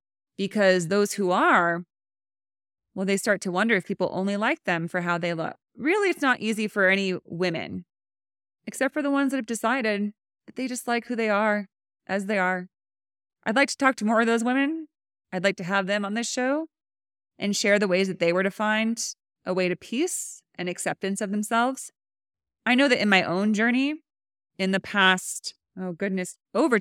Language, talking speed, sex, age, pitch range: English, 200 wpm, female, 20-39, 180-225 Hz